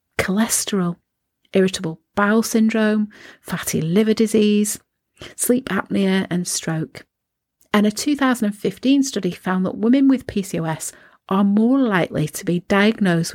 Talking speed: 115 wpm